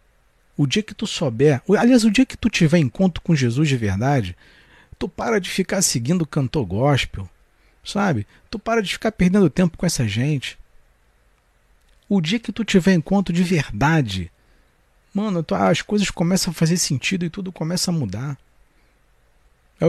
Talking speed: 165 wpm